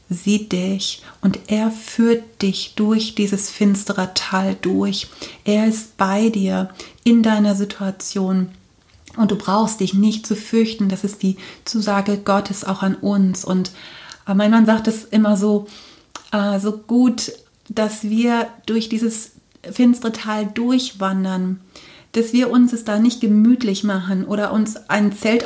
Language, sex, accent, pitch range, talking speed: German, female, German, 195-220 Hz, 145 wpm